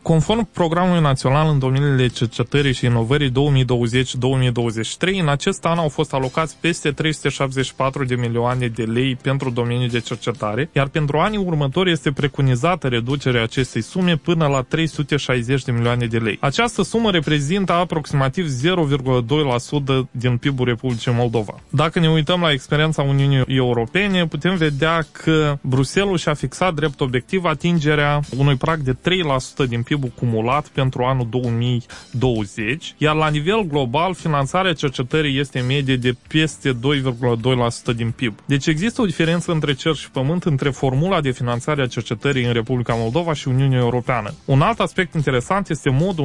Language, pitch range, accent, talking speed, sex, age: Romanian, 125-160 Hz, native, 150 wpm, male, 20-39